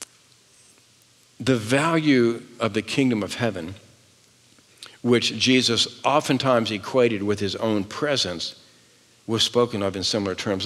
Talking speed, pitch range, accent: 120 wpm, 105-130 Hz, American